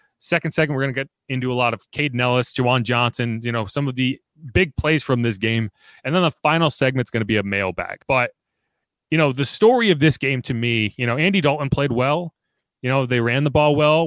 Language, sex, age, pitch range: English, male, 30-49, 115-155 Hz